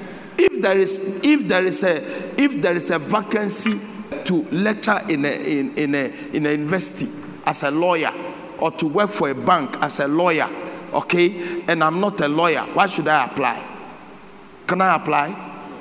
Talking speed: 180 wpm